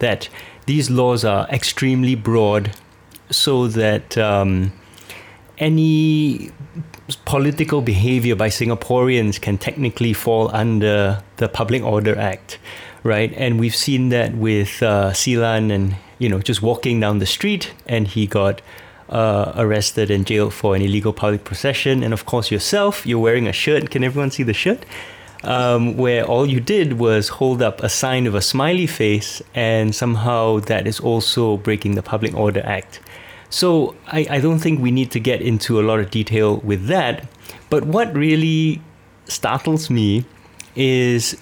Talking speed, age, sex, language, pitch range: 160 wpm, 30-49, male, English, 105-130 Hz